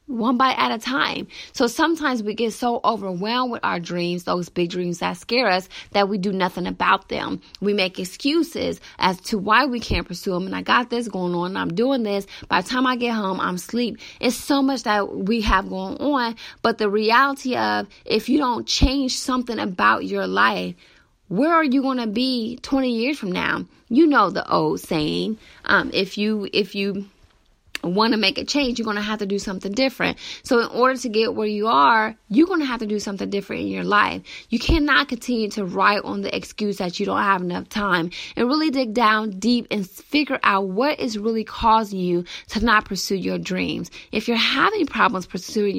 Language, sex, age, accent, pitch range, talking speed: English, female, 20-39, American, 200-255 Hz, 210 wpm